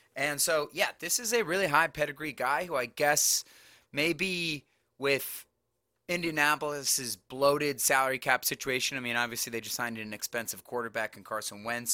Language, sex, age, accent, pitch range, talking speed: English, male, 30-49, American, 120-155 Hz, 160 wpm